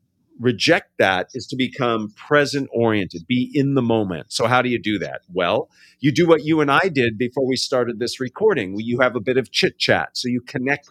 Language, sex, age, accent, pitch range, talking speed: English, male, 40-59, American, 110-145 Hz, 225 wpm